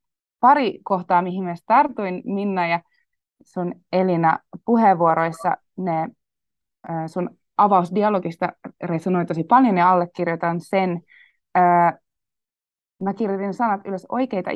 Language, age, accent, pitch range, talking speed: Finnish, 20-39, native, 165-190 Hz, 100 wpm